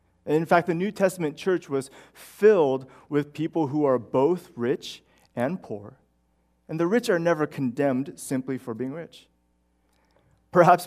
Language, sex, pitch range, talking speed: English, male, 110-150 Hz, 155 wpm